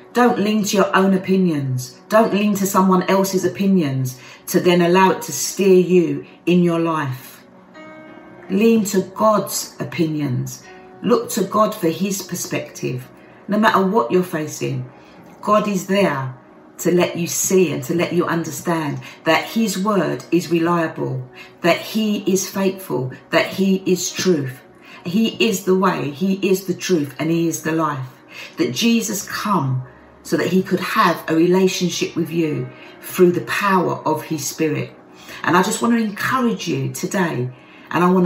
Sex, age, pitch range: female, 50-69, 155-190 Hz